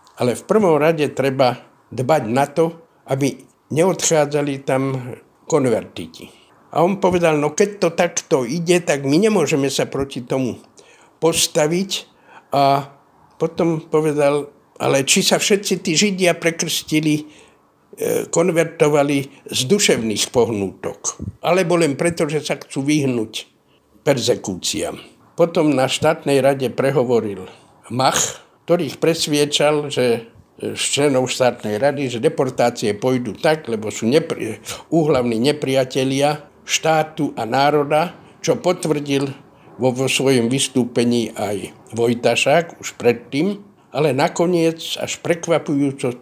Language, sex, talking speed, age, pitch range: Slovak, male, 115 wpm, 60-79, 130-165 Hz